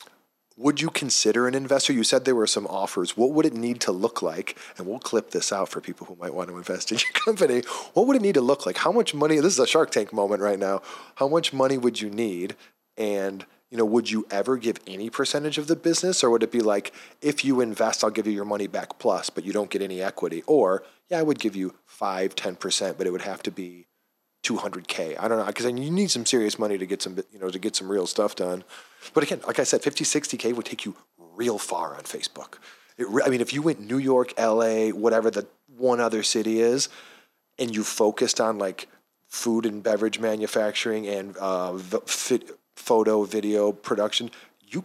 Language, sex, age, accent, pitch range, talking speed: English, male, 30-49, American, 105-130 Hz, 230 wpm